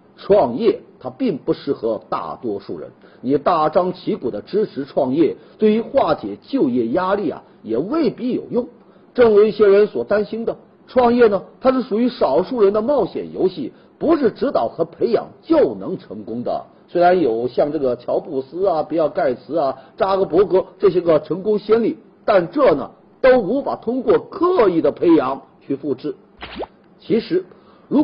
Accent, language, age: native, Chinese, 50-69